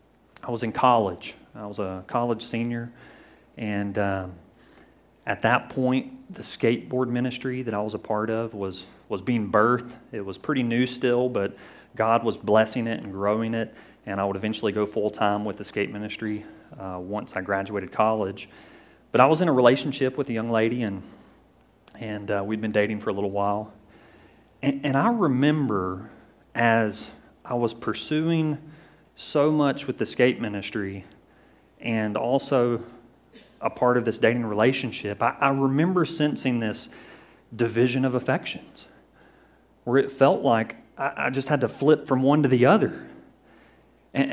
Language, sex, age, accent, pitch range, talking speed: English, male, 30-49, American, 105-135 Hz, 165 wpm